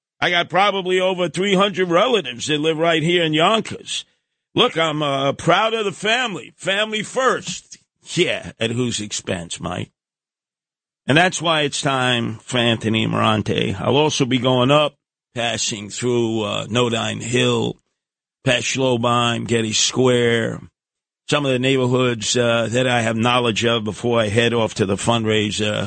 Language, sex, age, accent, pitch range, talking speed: English, male, 50-69, American, 110-140 Hz, 150 wpm